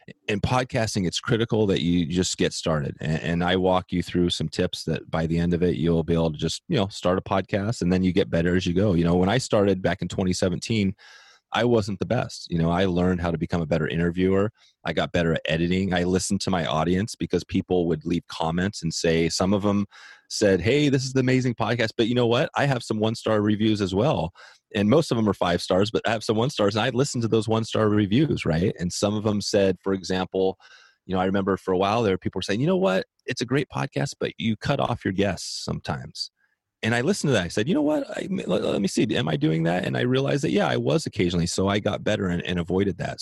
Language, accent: English, American